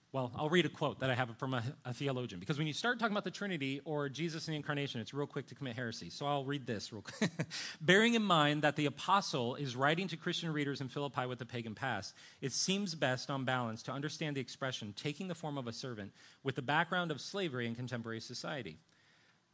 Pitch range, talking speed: 120-155 Hz, 235 wpm